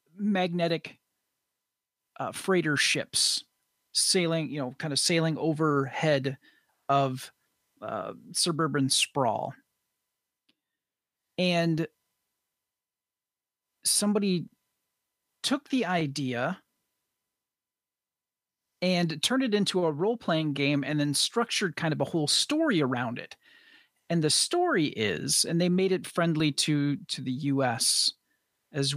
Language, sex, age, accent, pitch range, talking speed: English, male, 40-59, American, 145-185 Hz, 105 wpm